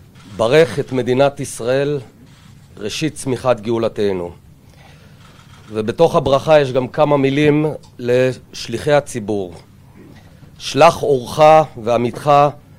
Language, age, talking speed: Hebrew, 40-59, 85 wpm